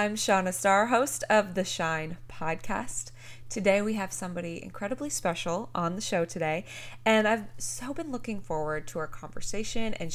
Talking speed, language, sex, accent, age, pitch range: 165 wpm, English, female, American, 20-39, 165-215 Hz